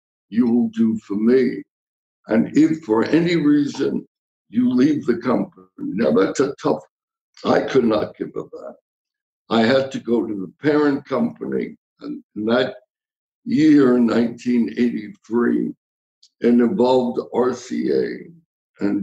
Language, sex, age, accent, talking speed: English, male, 60-79, American, 130 wpm